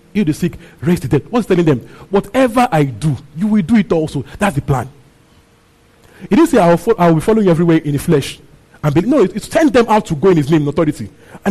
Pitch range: 145-210 Hz